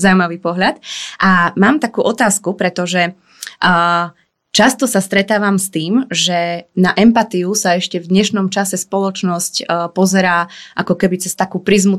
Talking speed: 140 wpm